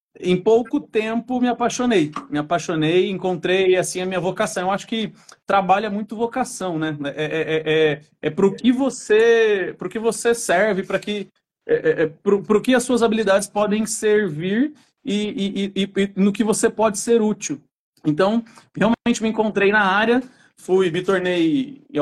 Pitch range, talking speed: 175-235 Hz, 160 wpm